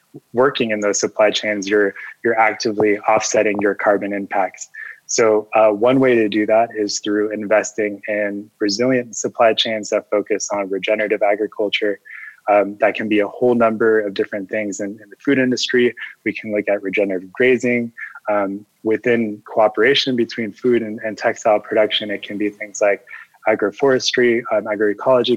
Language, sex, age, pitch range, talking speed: English, male, 20-39, 105-115 Hz, 160 wpm